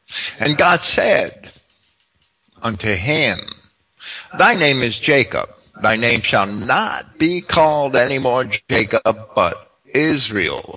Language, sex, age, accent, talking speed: English, male, 60-79, American, 110 wpm